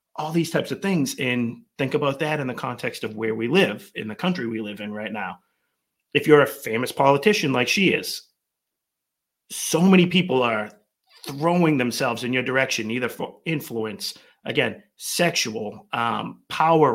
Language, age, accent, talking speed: English, 30-49, American, 170 wpm